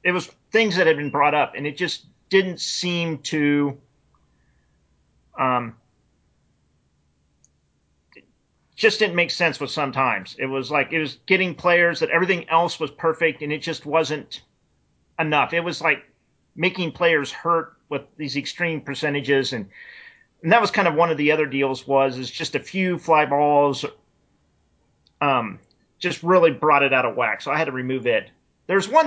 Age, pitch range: 40-59, 130-170 Hz